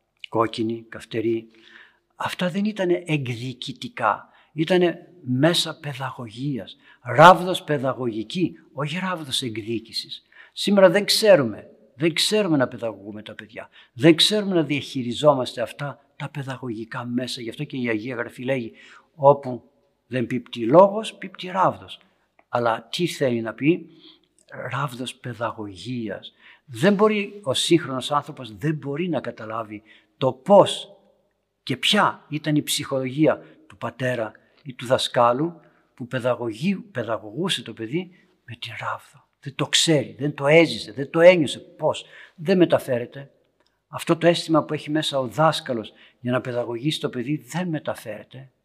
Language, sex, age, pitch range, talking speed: Greek, male, 60-79, 120-165 Hz, 130 wpm